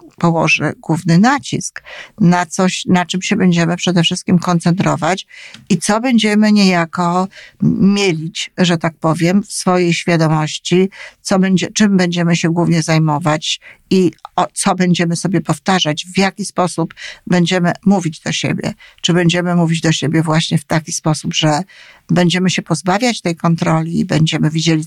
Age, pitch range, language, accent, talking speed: 50-69, 160-200 Hz, Polish, native, 145 wpm